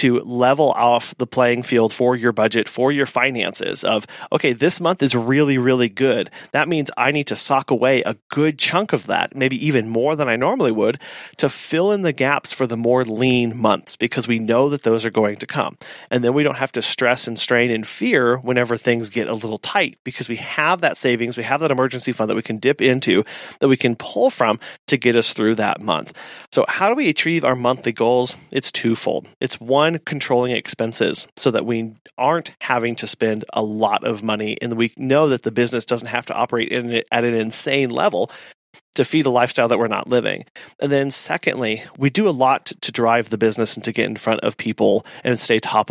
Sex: male